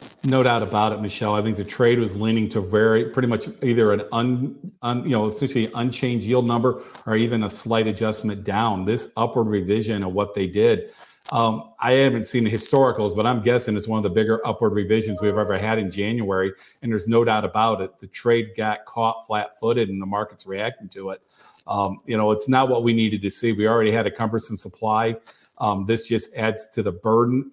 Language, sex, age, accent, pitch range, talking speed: English, male, 50-69, American, 105-115 Hz, 215 wpm